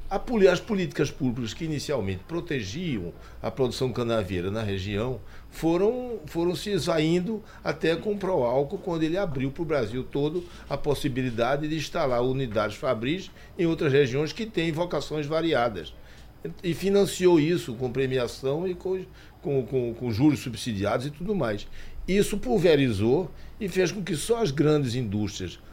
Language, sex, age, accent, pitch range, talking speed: Portuguese, male, 60-79, Brazilian, 105-155 Hz, 150 wpm